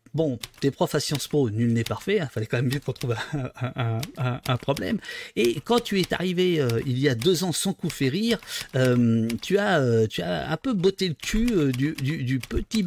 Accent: French